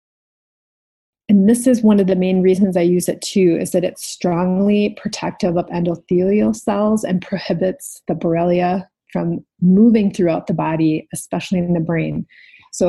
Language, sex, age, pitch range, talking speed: English, female, 30-49, 175-200 Hz, 160 wpm